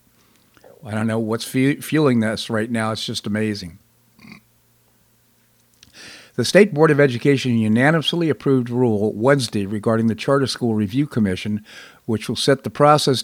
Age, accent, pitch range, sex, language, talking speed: 50-69, American, 110-135 Hz, male, English, 150 wpm